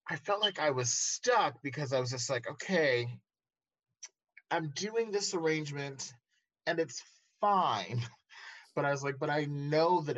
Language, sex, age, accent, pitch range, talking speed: English, male, 30-49, American, 115-155 Hz, 160 wpm